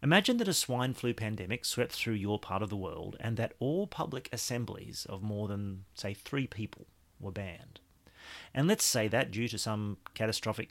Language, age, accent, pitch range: English, 40-59, Australian, 100-120 Hz